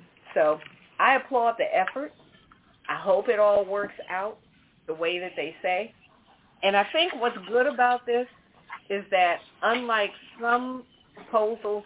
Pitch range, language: 180-220 Hz, English